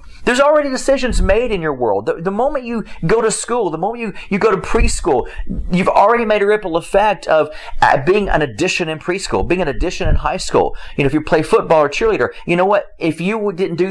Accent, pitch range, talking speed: American, 165-215 Hz, 235 wpm